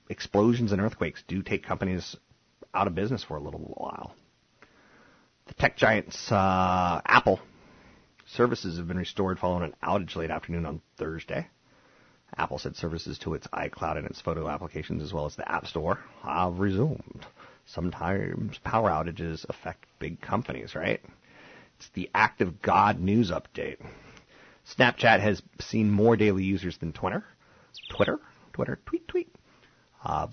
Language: English